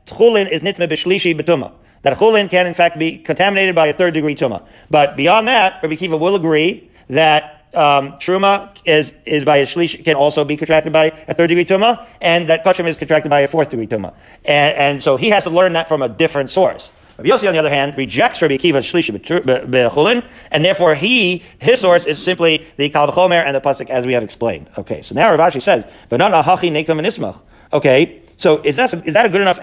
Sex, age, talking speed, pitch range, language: male, 40-59, 205 wpm, 150-190 Hz, English